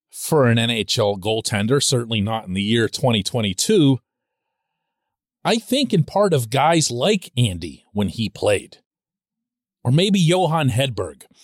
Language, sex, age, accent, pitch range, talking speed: English, male, 40-59, American, 120-190 Hz, 130 wpm